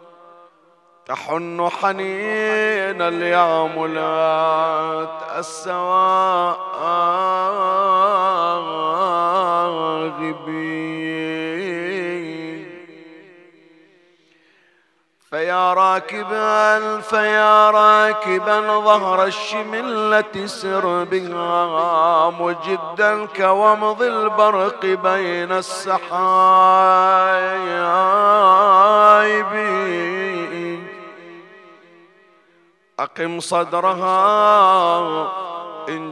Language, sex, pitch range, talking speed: Arabic, male, 170-195 Hz, 35 wpm